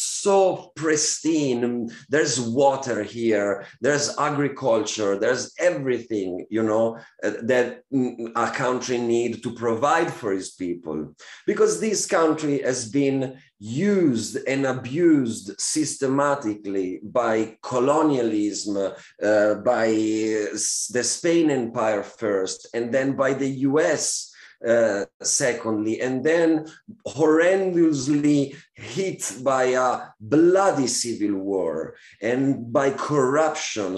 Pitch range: 110-150 Hz